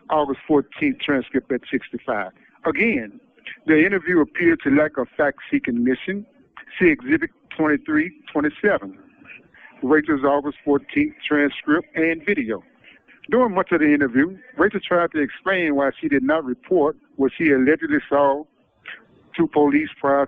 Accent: American